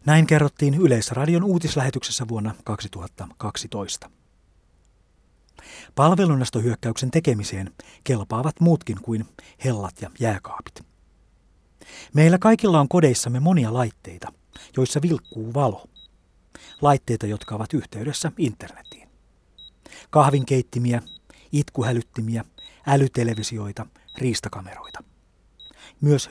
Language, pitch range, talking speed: Finnish, 110-150 Hz, 75 wpm